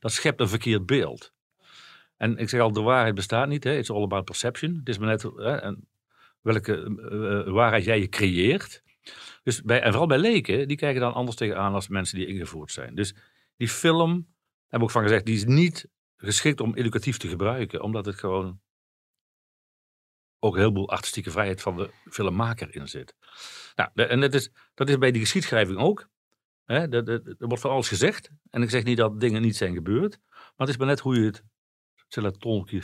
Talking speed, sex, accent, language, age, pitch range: 200 wpm, male, Dutch, Dutch, 50-69, 95-125 Hz